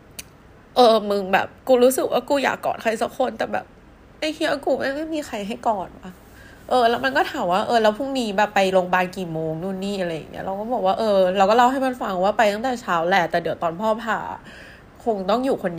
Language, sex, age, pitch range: Thai, female, 20-39, 180-245 Hz